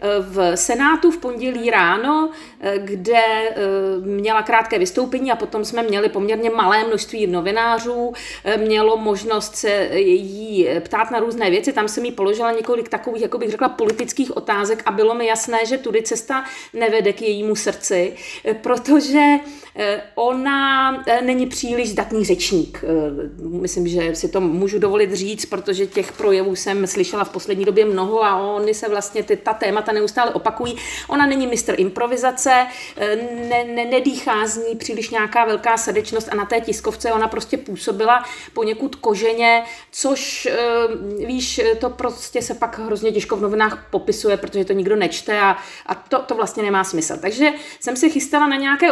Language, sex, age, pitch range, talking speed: Czech, female, 40-59, 210-255 Hz, 155 wpm